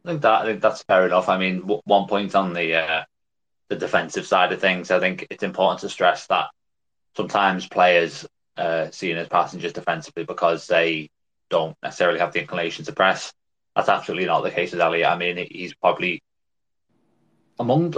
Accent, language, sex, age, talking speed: British, English, male, 20-39, 190 wpm